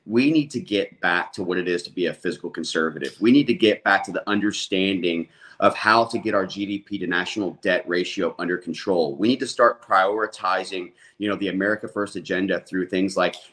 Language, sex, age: English, male, 30-49